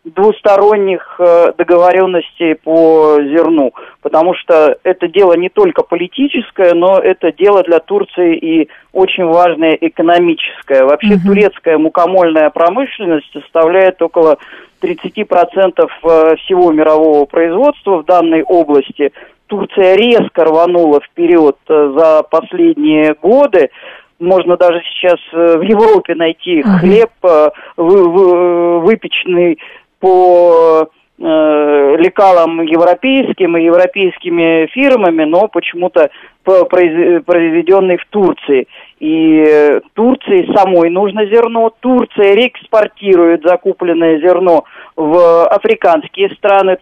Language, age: Russian, 40-59